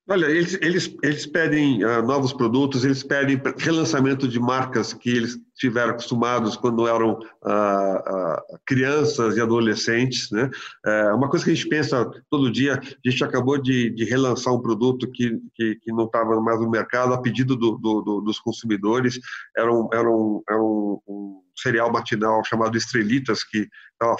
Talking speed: 175 wpm